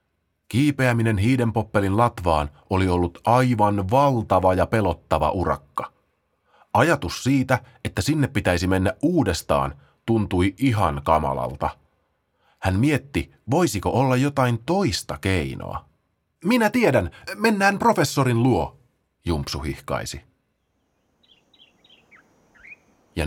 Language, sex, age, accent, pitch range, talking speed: Finnish, male, 30-49, native, 90-135 Hz, 90 wpm